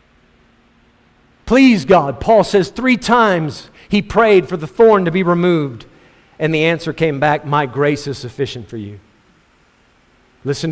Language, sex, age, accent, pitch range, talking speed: English, male, 50-69, American, 135-190 Hz, 145 wpm